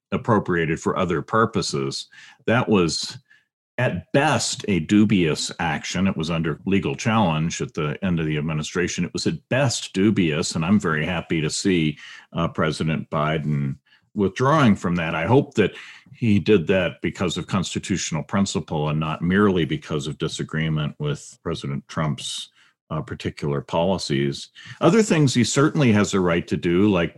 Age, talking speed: 50-69, 155 wpm